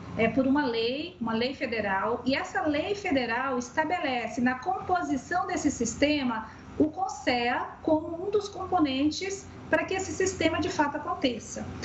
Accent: Brazilian